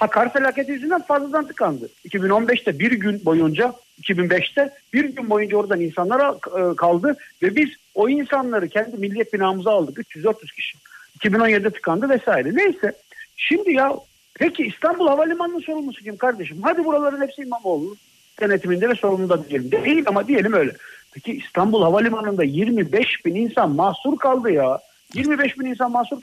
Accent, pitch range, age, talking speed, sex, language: native, 210-270 Hz, 60-79, 150 wpm, male, Turkish